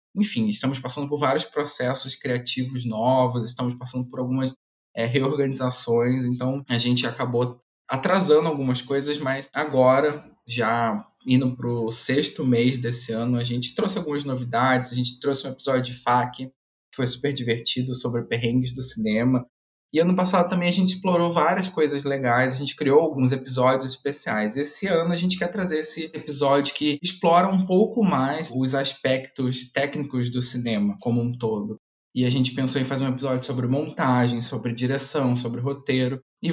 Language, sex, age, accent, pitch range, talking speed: Portuguese, male, 20-39, Brazilian, 125-150 Hz, 170 wpm